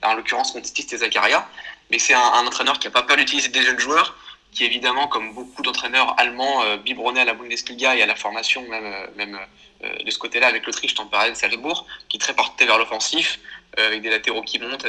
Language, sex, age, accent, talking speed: French, male, 20-39, French, 205 wpm